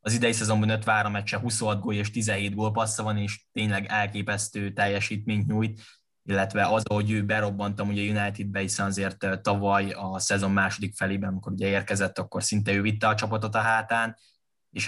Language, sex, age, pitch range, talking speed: Hungarian, male, 10-29, 100-110 Hz, 175 wpm